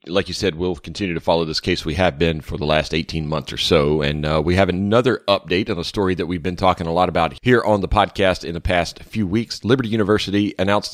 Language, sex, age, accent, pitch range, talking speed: English, male, 40-59, American, 85-105 Hz, 260 wpm